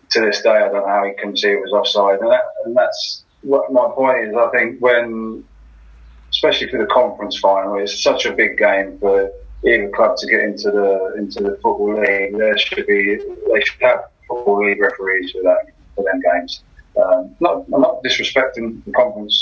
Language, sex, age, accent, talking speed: English, male, 30-49, British, 200 wpm